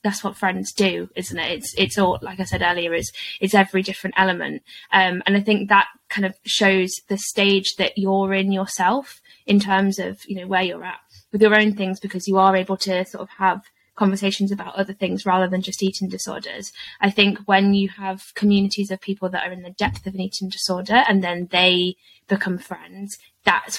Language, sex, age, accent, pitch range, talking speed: English, female, 20-39, British, 185-200 Hz, 210 wpm